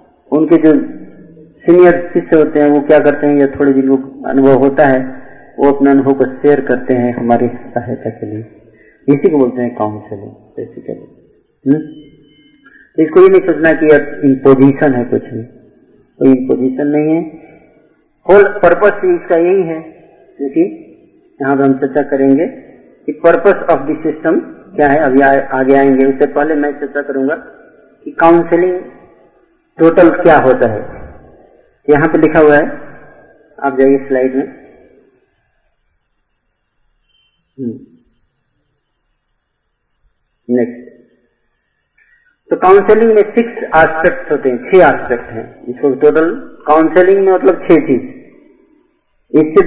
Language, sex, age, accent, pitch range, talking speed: Hindi, male, 50-69, native, 135-170 Hz, 125 wpm